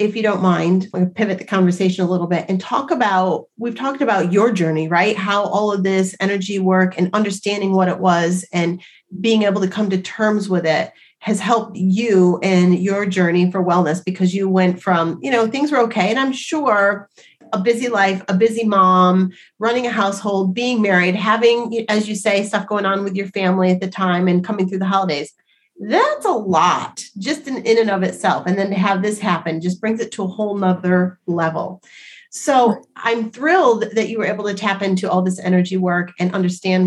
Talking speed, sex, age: 210 wpm, female, 30-49